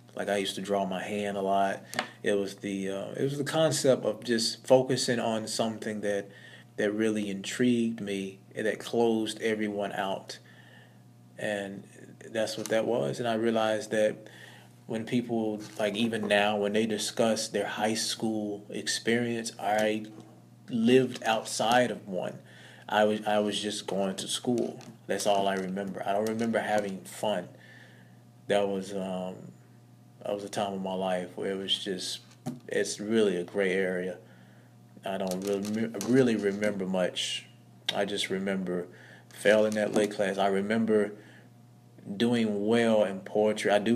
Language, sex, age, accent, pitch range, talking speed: English, male, 20-39, American, 100-115 Hz, 155 wpm